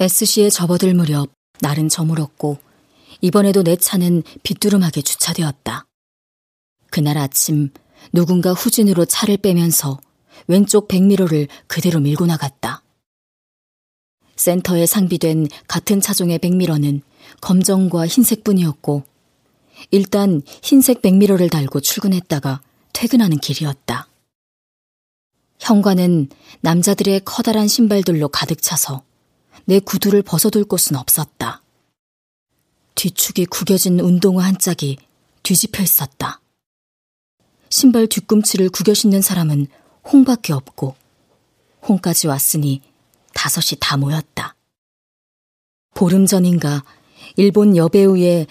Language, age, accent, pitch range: Korean, 40-59, native, 150-200 Hz